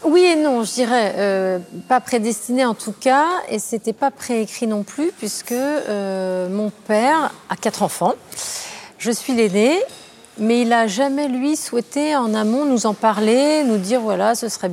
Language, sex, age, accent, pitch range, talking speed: French, female, 30-49, French, 200-255 Hz, 185 wpm